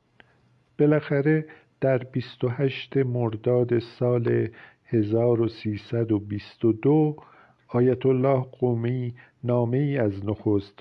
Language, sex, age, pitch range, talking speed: Persian, male, 50-69, 110-130 Hz, 80 wpm